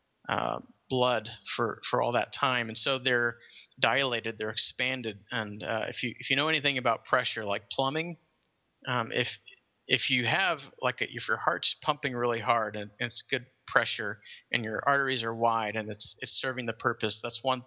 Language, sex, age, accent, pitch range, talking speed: English, male, 30-49, American, 110-130 Hz, 185 wpm